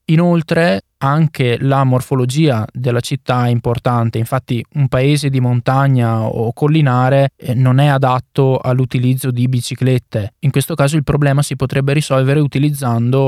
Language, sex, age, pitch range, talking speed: Italian, male, 20-39, 120-140 Hz, 135 wpm